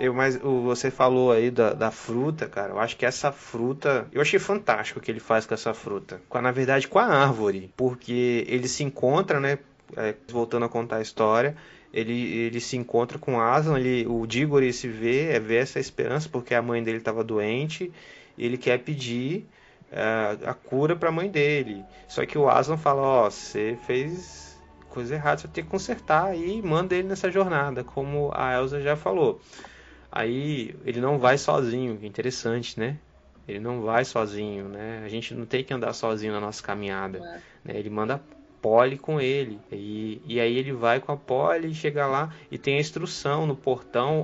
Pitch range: 115-145 Hz